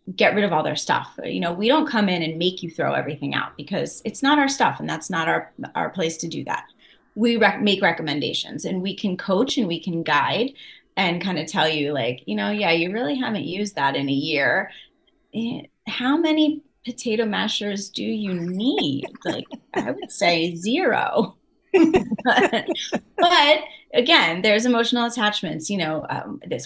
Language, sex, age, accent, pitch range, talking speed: English, female, 30-49, American, 170-230 Hz, 185 wpm